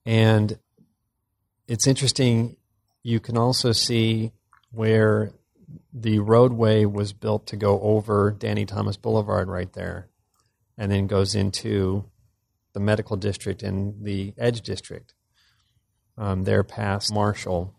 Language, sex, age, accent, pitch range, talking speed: English, male, 40-59, American, 100-115 Hz, 120 wpm